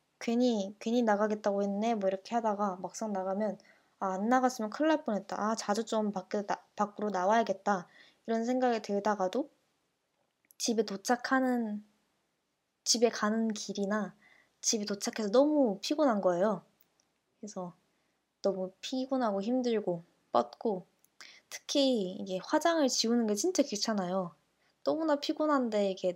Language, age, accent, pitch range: Korean, 20-39, native, 195-235 Hz